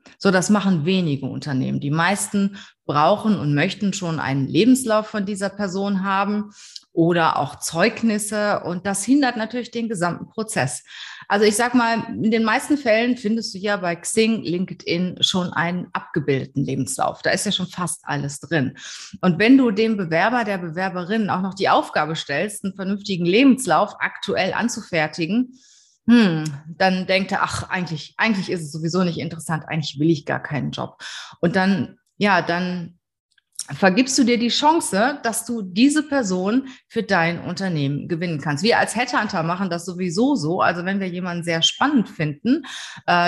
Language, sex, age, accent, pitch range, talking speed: German, female, 30-49, German, 170-220 Hz, 165 wpm